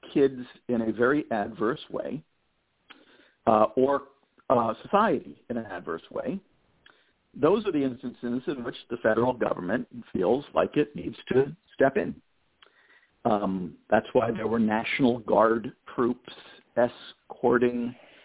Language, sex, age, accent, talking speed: English, male, 50-69, American, 130 wpm